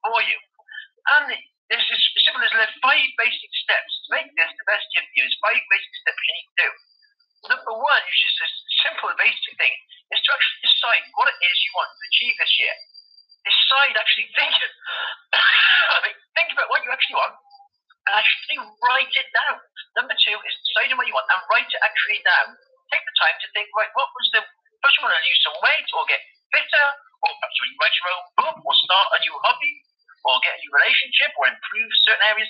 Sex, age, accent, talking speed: male, 40-59, British, 210 wpm